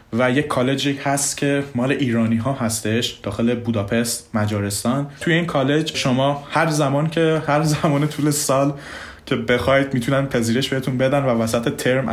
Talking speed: 160 wpm